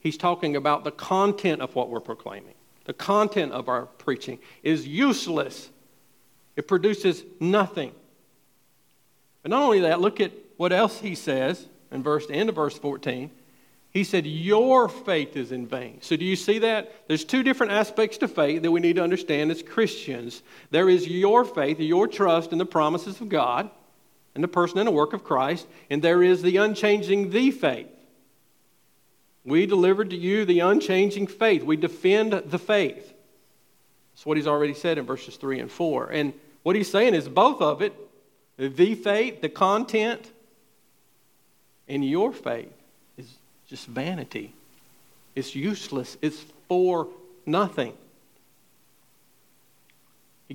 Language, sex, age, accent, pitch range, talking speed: English, male, 50-69, American, 150-205 Hz, 155 wpm